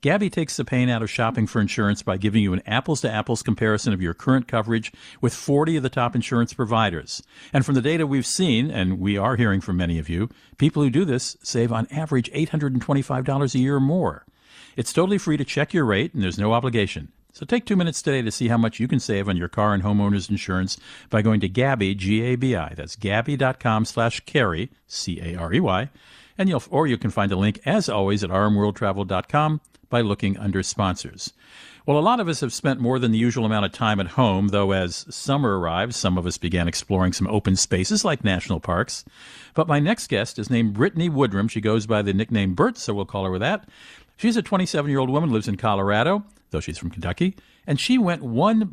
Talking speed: 210 wpm